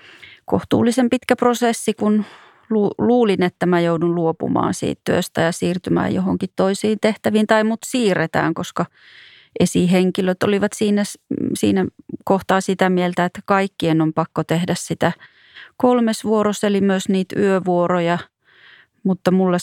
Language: Finnish